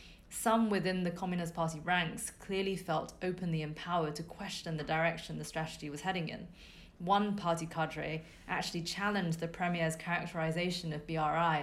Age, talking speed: 30-49, 150 wpm